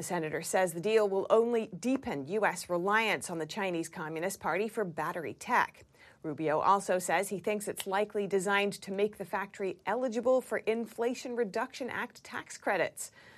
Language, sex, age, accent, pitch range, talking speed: English, female, 40-59, American, 175-225 Hz, 165 wpm